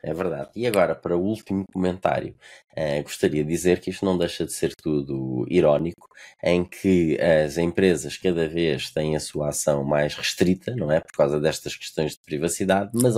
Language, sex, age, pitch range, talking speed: Portuguese, male, 20-39, 85-105 Hz, 185 wpm